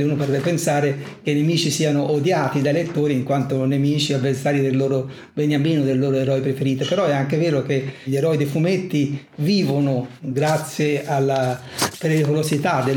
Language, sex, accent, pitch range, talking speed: Italian, male, native, 135-150 Hz, 160 wpm